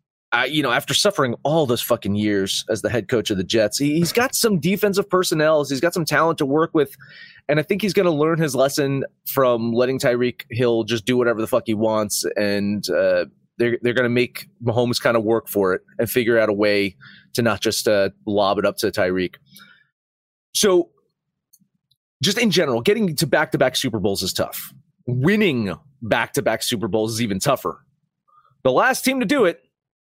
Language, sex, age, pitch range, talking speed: English, male, 30-49, 110-155 Hz, 195 wpm